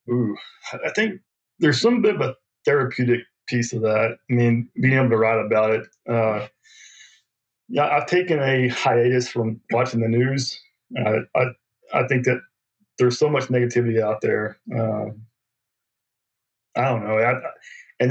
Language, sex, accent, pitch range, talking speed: English, male, American, 115-130 Hz, 155 wpm